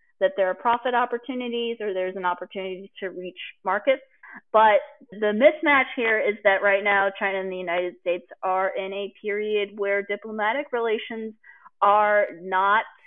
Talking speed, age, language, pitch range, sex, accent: 155 wpm, 30-49, English, 190-240 Hz, female, American